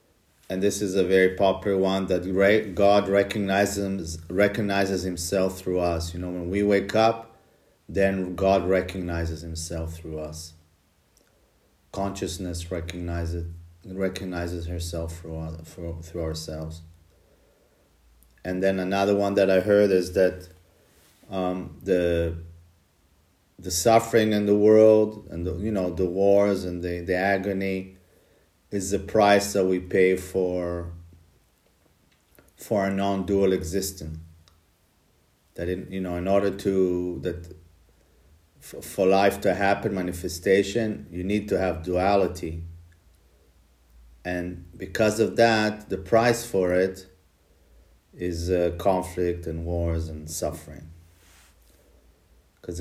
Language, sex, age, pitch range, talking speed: English, male, 40-59, 85-95 Hz, 120 wpm